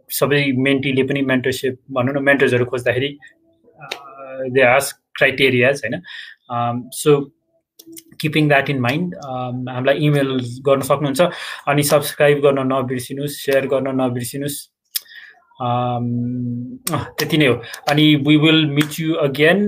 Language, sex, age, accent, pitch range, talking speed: English, male, 20-39, Indian, 125-140 Hz, 60 wpm